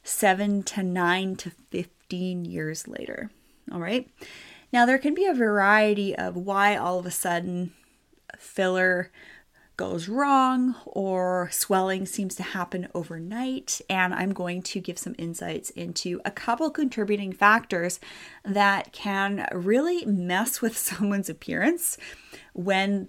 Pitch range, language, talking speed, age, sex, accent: 180-245 Hz, English, 130 wpm, 30-49, female, American